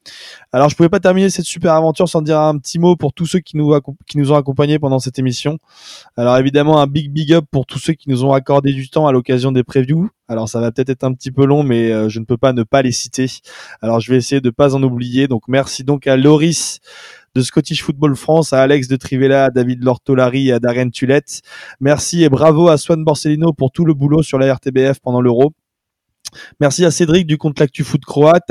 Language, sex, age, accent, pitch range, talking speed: French, male, 20-39, French, 135-160 Hz, 240 wpm